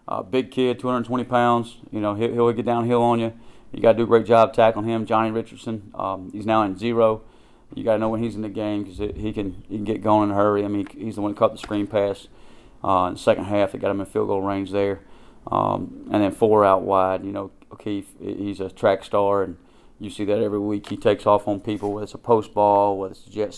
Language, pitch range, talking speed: English, 100-110 Hz, 265 wpm